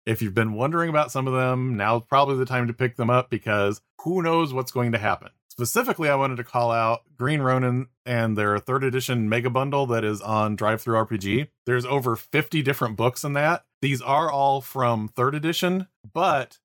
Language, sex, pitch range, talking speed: English, male, 110-130 Hz, 200 wpm